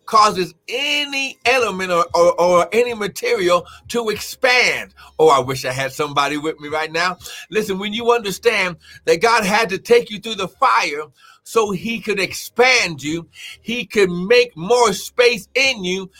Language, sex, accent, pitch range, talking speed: English, male, American, 185-245 Hz, 165 wpm